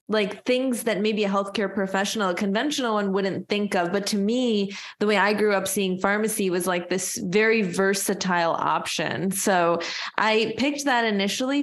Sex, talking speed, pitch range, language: female, 175 wpm, 185-220 Hz, English